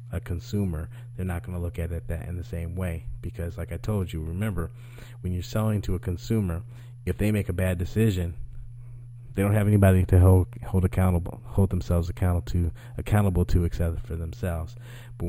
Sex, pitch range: male, 90-120 Hz